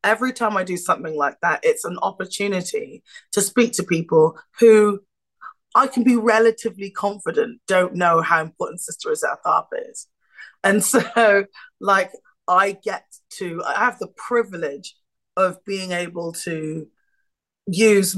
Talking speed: 140 wpm